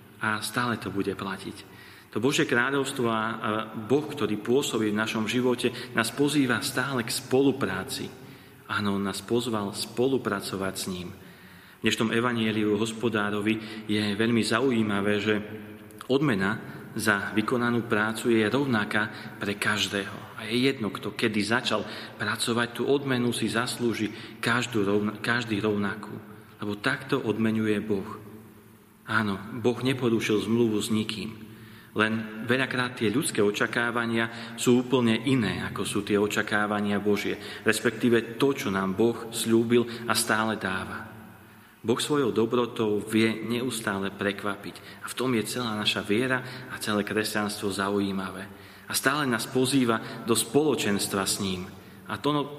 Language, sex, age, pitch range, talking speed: Slovak, male, 40-59, 105-120 Hz, 130 wpm